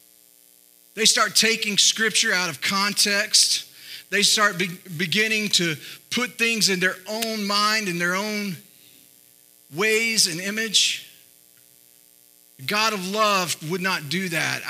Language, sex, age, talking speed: English, male, 40-59, 125 wpm